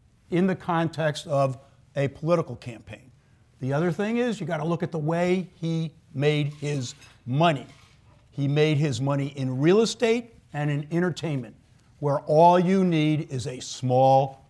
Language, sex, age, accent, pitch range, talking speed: English, male, 50-69, American, 130-170 Hz, 155 wpm